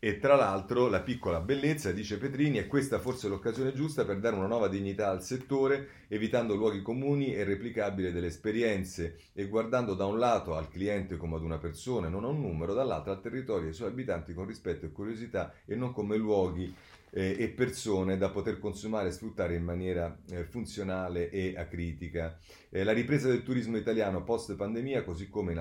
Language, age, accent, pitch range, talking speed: Italian, 30-49, native, 85-110 Hz, 190 wpm